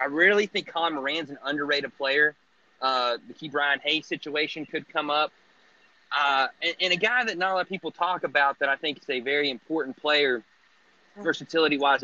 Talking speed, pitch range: 195 wpm, 135-160 Hz